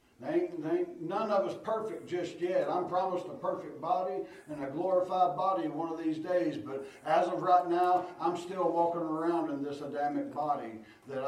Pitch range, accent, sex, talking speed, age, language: 135-180 Hz, American, male, 175 wpm, 60-79, English